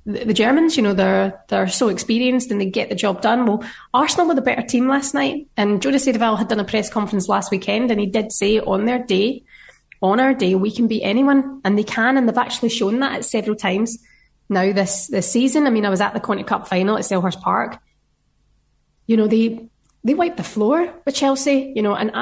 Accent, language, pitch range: British, English, 200-250 Hz